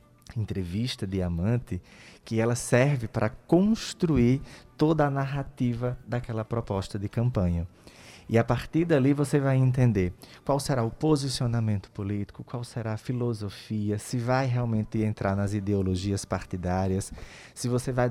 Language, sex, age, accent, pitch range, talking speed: Portuguese, male, 20-39, Brazilian, 105-140 Hz, 135 wpm